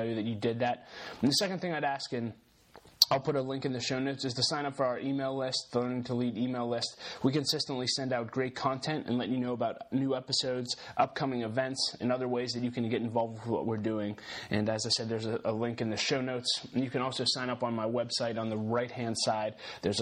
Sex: male